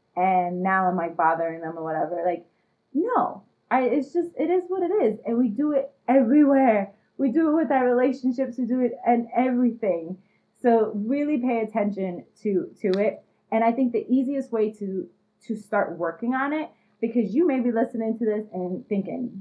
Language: English